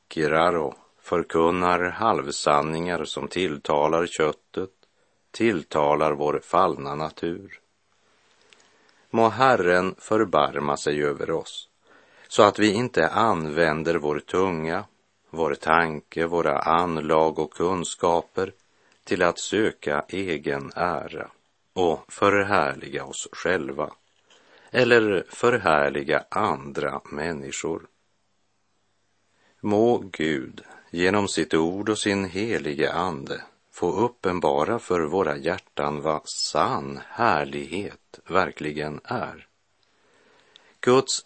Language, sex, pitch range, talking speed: Swedish, male, 75-100 Hz, 90 wpm